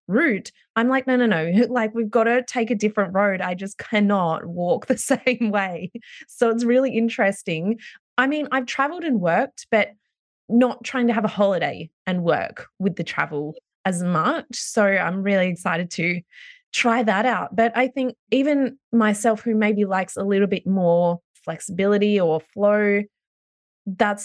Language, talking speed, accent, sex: English, 170 wpm, Australian, female